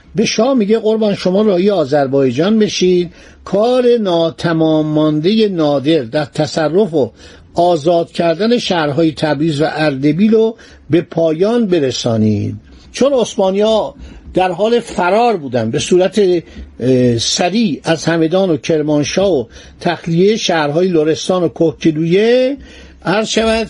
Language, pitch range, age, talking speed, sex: Persian, 155-210 Hz, 60-79, 110 wpm, male